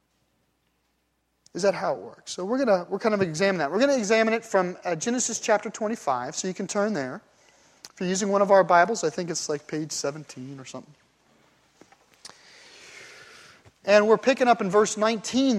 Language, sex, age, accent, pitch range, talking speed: English, male, 30-49, American, 160-225 Hz, 195 wpm